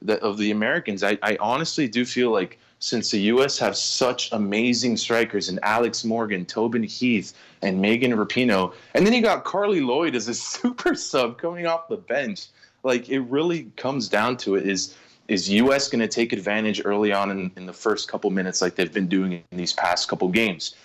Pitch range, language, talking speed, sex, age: 105-140 Hz, English, 200 wpm, male, 20-39